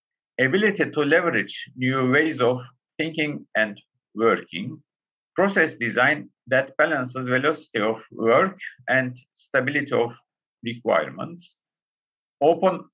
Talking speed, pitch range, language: 95 wpm, 125-155 Hz, Turkish